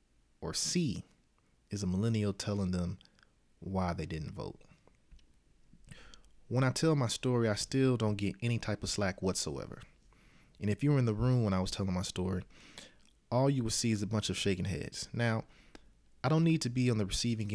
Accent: American